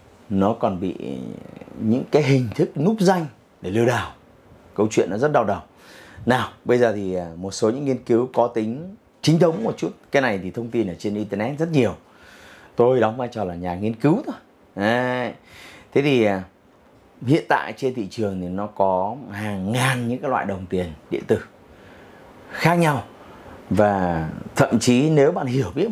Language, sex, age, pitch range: Vietnamese, male, 30-49, 100-135 Hz